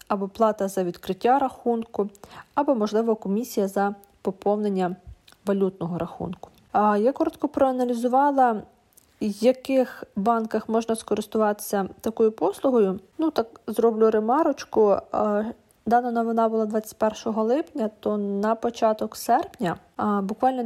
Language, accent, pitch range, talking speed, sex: Russian, native, 200-230 Hz, 105 wpm, female